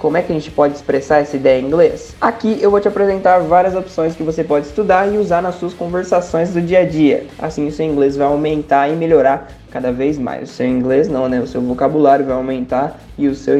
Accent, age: Brazilian, 20-39